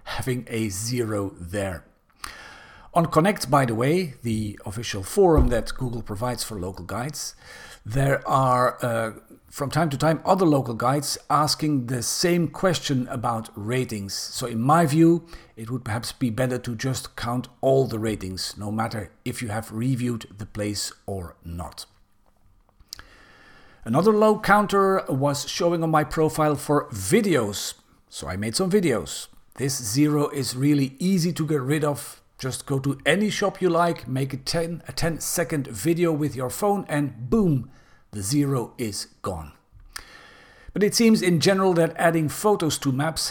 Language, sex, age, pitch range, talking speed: English, male, 50-69, 110-155 Hz, 160 wpm